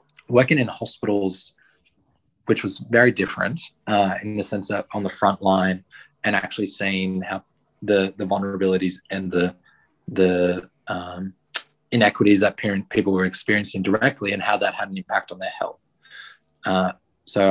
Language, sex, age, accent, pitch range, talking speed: English, male, 20-39, Australian, 95-105 Hz, 155 wpm